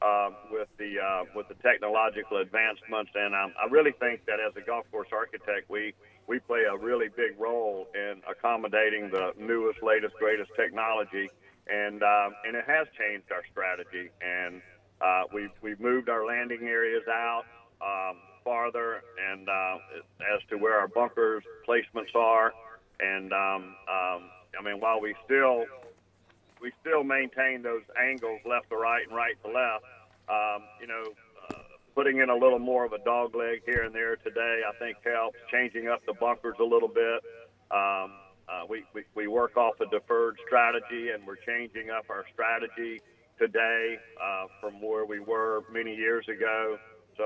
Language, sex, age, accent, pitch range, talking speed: English, male, 50-69, American, 105-125 Hz, 170 wpm